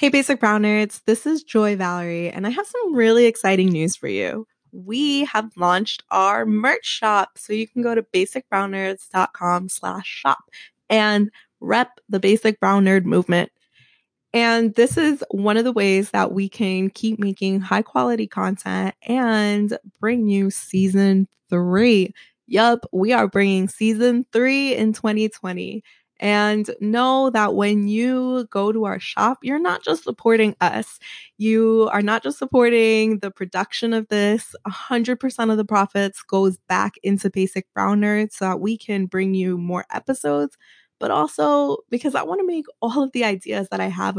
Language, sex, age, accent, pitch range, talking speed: English, female, 20-39, American, 190-230 Hz, 165 wpm